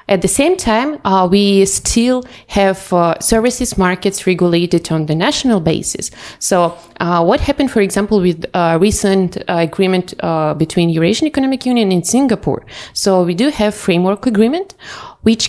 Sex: female